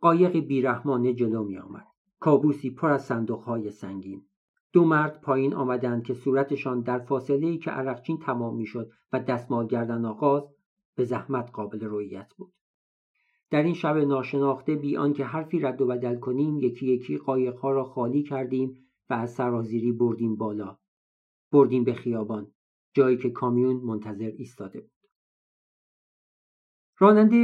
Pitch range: 115-145 Hz